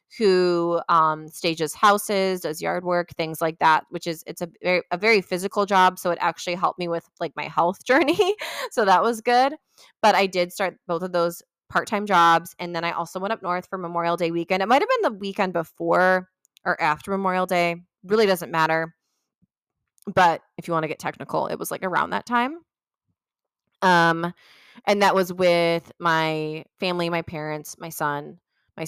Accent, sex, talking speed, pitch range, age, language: American, female, 190 wpm, 165-190 Hz, 20-39, English